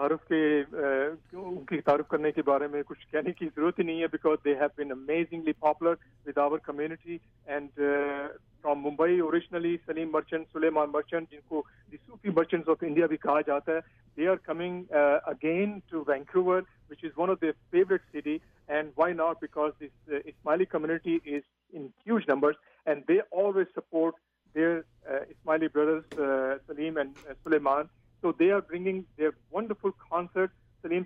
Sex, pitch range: male, 145-170 Hz